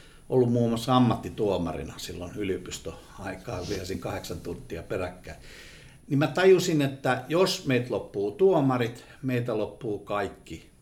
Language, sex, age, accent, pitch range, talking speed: Finnish, male, 60-79, native, 100-135 Hz, 115 wpm